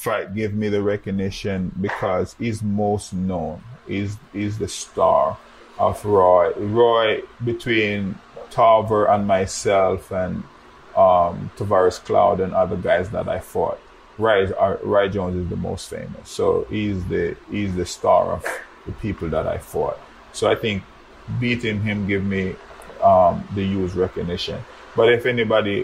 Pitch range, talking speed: 95-110 Hz, 145 wpm